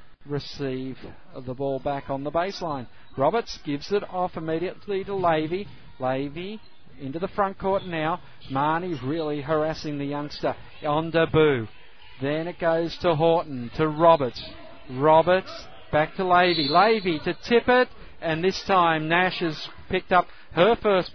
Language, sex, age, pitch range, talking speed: English, male, 50-69, 140-180 Hz, 145 wpm